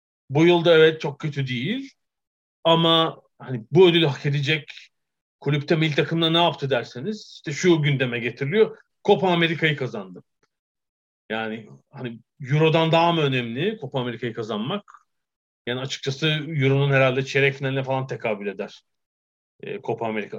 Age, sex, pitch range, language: 40-59, male, 125-160 Hz, Turkish